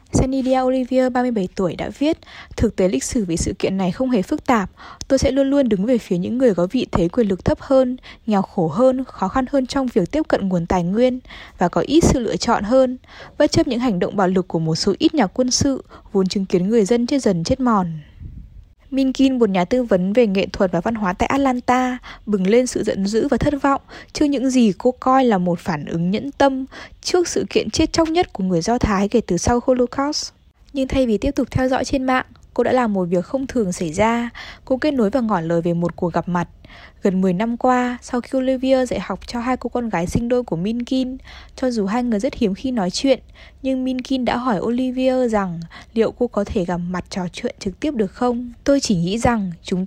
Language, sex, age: Vietnamese, female, 20-39